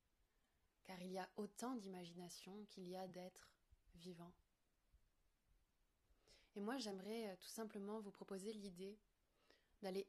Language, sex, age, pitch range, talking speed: French, female, 20-39, 185-210 Hz, 120 wpm